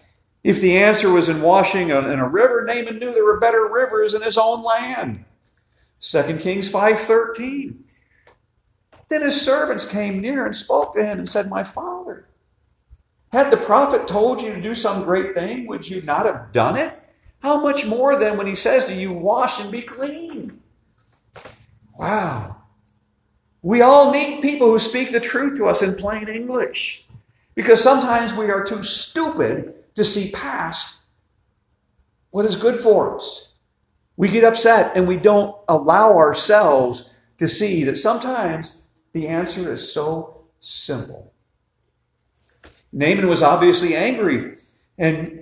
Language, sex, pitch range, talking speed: English, male, 165-235 Hz, 150 wpm